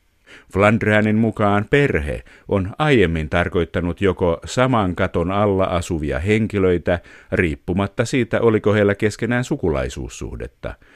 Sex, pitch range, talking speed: male, 90-115 Hz, 100 wpm